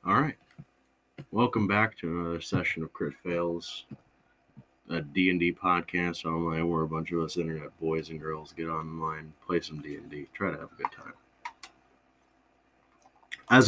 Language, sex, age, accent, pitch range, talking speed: English, male, 30-49, American, 80-100 Hz, 155 wpm